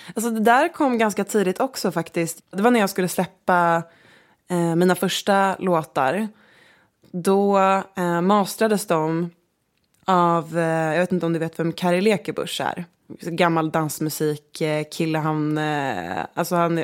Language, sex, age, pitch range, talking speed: Swedish, female, 20-39, 165-195 Hz, 155 wpm